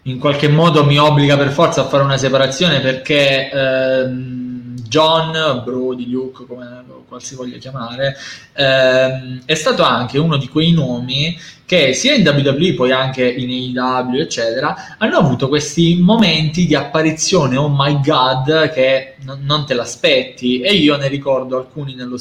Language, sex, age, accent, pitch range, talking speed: Italian, male, 20-39, native, 125-150 Hz, 150 wpm